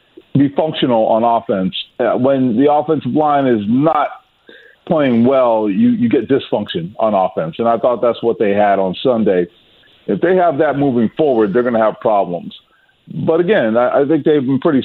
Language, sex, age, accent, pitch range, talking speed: English, male, 40-59, American, 115-150 Hz, 185 wpm